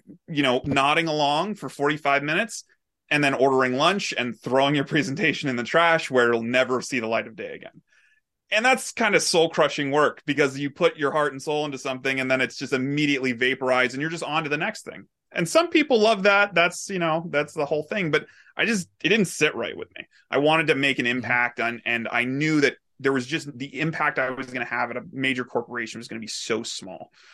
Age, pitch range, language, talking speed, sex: 30-49, 125-160 Hz, English, 240 wpm, male